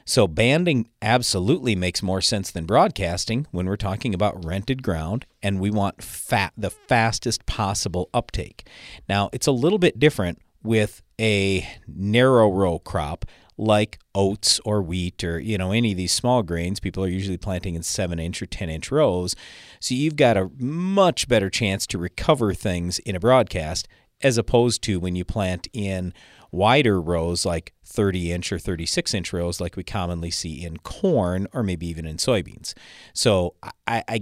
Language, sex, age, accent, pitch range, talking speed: English, male, 40-59, American, 90-115 Hz, 170 wpm